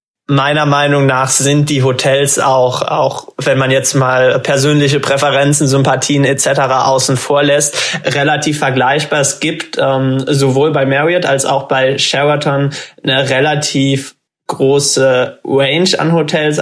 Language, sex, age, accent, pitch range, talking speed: German, male, 20-39, German, 135-145 Hz, 135 wpm